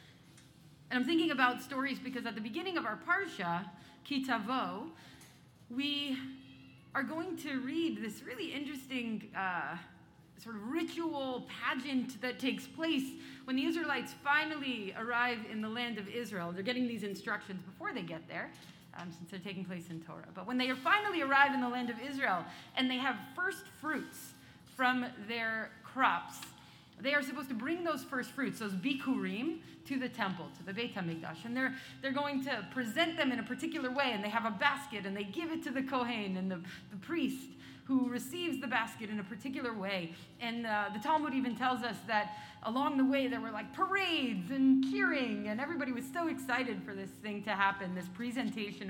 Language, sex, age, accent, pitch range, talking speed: English, female, 30-49, American, 210-275 Hz, 190 wpm